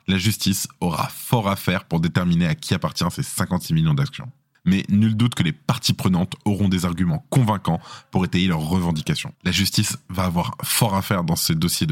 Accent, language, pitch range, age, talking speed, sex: French, French, 95-125 Hz, 20-39, 200 wpm, male